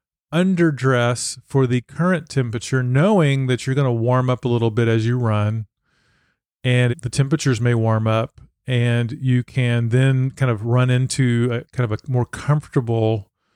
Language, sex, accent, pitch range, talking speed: English, male, American, 120-145 Hz, 170 wpm